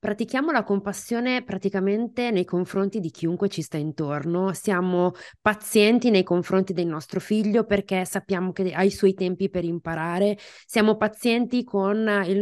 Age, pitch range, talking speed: 20-39, 190-230 Hz, 150 wpm